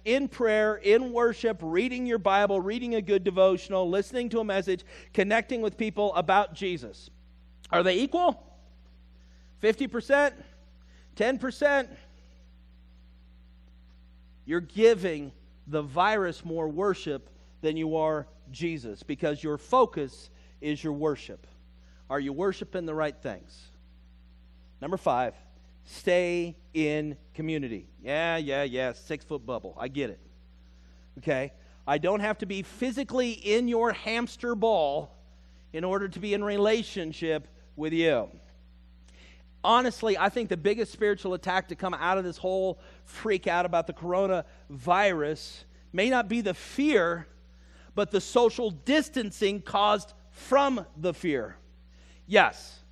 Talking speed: 125 wpm